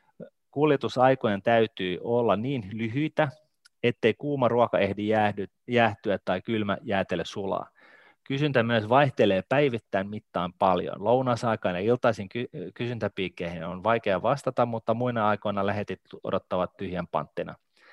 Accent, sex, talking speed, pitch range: native, male, 120 wpm, 100-125 Hz